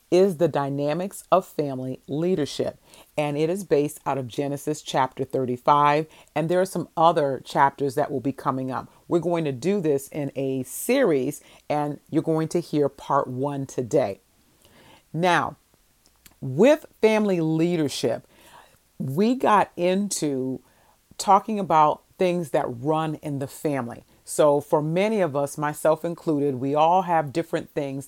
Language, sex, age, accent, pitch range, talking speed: English, female, 40-59, American, 140-170 Hz, 145 wpm